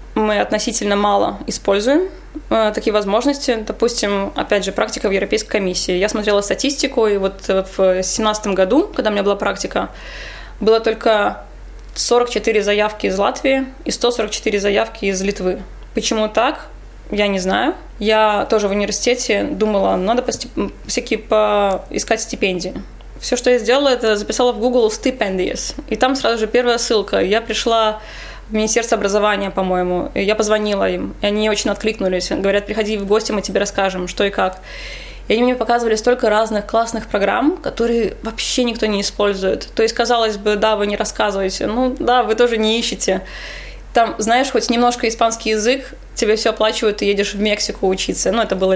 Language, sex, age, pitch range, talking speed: Russian, female, 20-39, 200-235 Hz, 160 wpm